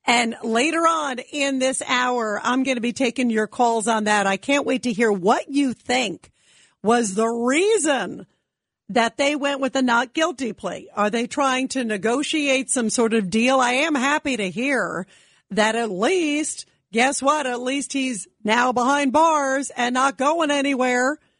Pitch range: 225-280 Hz